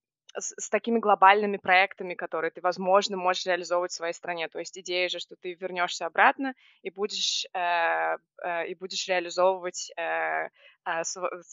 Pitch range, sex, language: 165-190 Hz, female, Russian